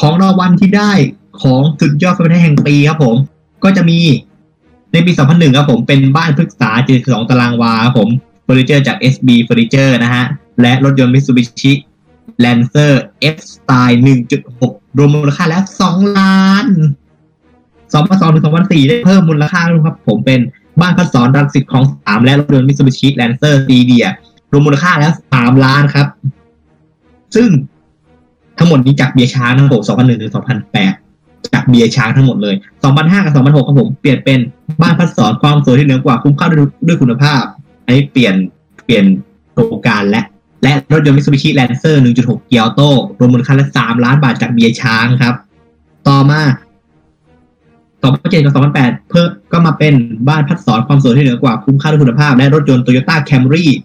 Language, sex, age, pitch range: Thai, male, 20-39, 120-150 Hz